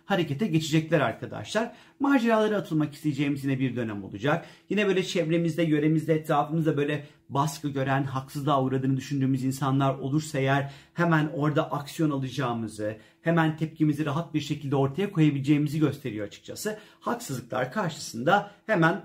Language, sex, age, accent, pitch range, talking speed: Turkish, male, 40-59, native, 135-170 Hz, 125 wpm